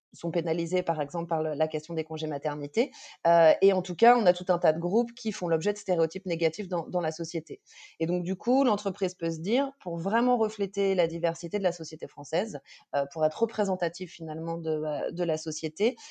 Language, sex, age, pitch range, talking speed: French, female, 30-49, 165-210 Hz, 215 wpm